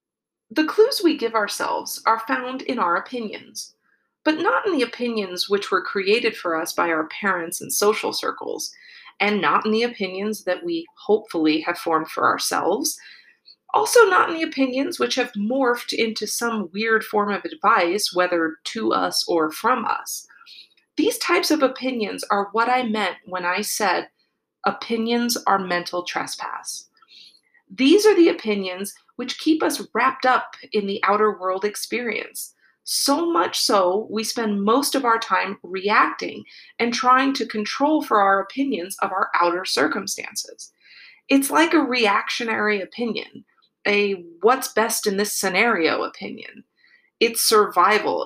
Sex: female